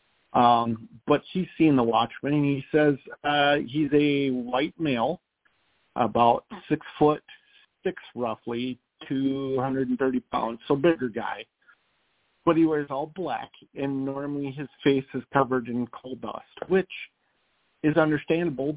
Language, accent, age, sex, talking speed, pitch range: English, American, 50-69, male, 130 wpm, 120-145 Hz